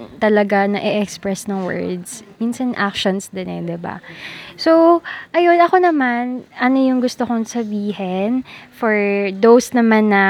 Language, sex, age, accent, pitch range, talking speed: Filipino, female, 20-39, native, 200-260 Hz, 135 wpm